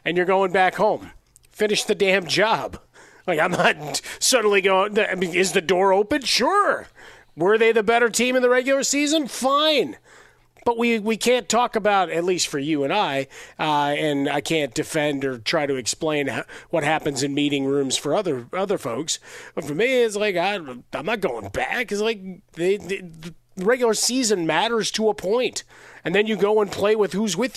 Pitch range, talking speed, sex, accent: 175-225 Hz, 195 wpm, male, American